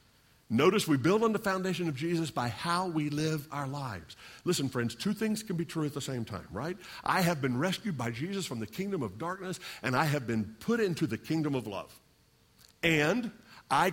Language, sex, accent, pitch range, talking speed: English, male, American, 145-190 Hz, 210 wpm